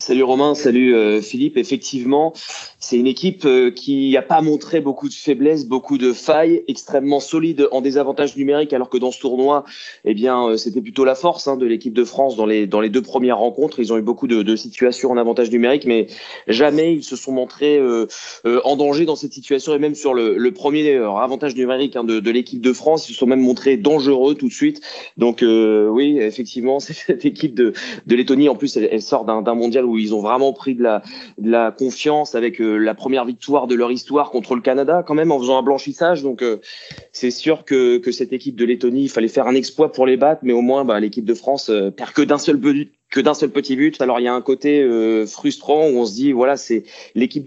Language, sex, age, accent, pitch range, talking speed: French, male, 30-49, French, 120-145 Hz, 240 wpm